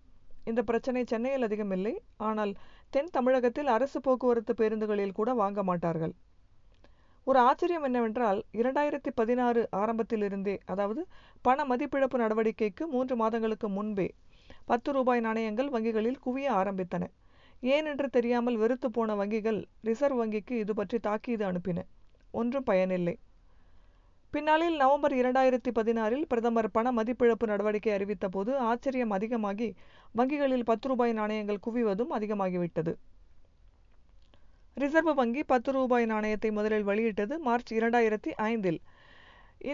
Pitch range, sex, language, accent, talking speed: 200-255 Hz, female, Tamil, native, 110 wpm